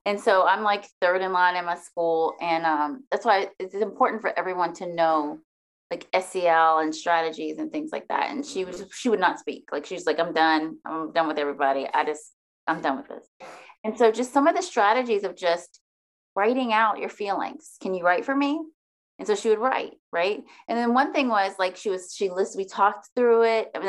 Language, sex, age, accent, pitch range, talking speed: English, female, 30-49, American, 180-260 Hz, 225 wpm